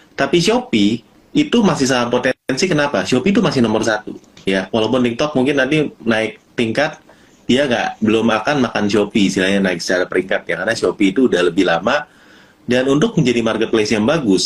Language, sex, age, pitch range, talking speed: Indonesian, male, 30-49, 105-145 Hz, 180 wpm